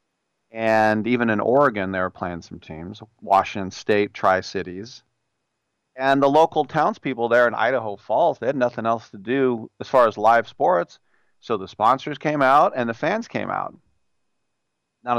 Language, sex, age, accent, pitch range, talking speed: English, male, 40-59, American, 105-130 Hz, 165 wpm